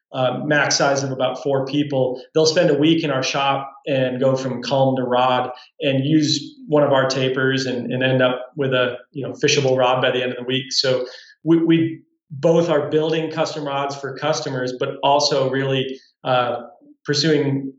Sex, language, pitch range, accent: male, English, 130-160 Hz, American